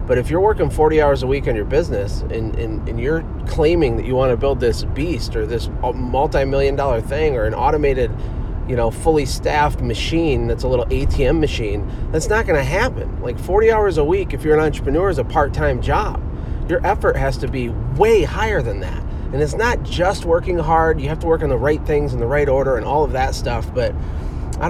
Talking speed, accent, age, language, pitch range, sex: 220 wpm, American, 30-49, English, 120-160 Hz, male